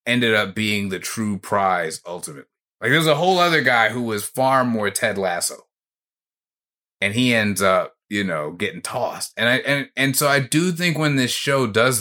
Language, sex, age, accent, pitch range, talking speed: English, male, 30-49, American, 110-140 Hz, 195 wpm